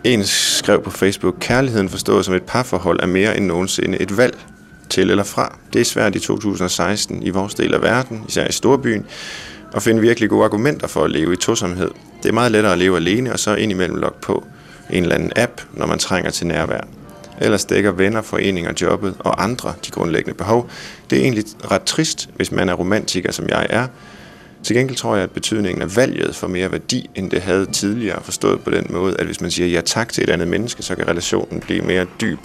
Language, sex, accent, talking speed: Danish, male, native, 220 wpm